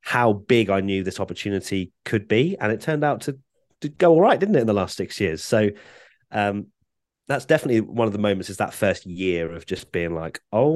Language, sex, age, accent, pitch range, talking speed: English, male, 30-49, British, 90-115 Hz, 230 wpm